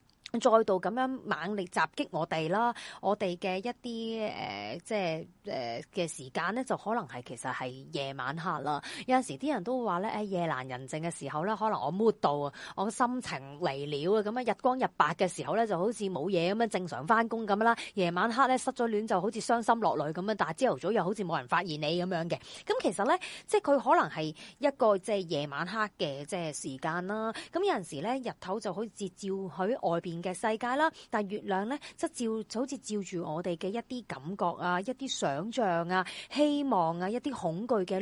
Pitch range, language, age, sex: 175-240 Hz, Chinese, 30-49, female